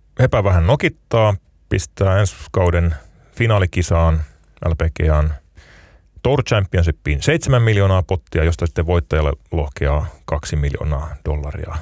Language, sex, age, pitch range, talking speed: Finnish, male, 30-49, 80-100 Hz, 100 wpm